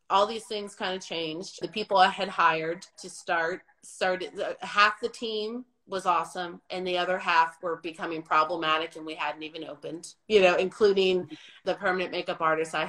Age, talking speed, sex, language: 30-49, 180 wpm, female, English